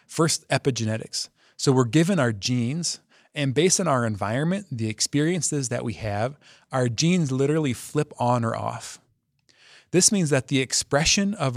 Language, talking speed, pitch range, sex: English, 155 wpm, 110-145 Hz, male